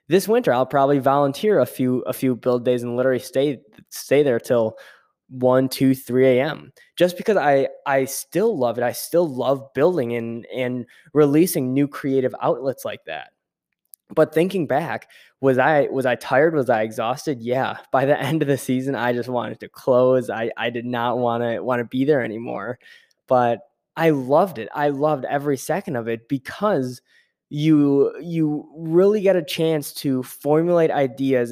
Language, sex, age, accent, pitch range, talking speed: English, male, 10-29, American, 125-160 Hz, 175 wpm